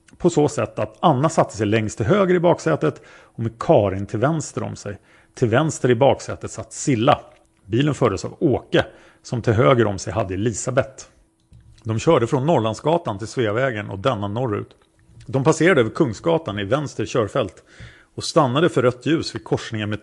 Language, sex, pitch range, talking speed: Swedish, male, 105-135 Hz, 180 wpm